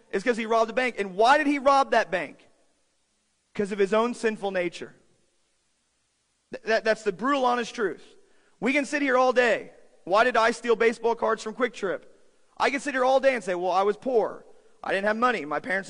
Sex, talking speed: male, 215 wpm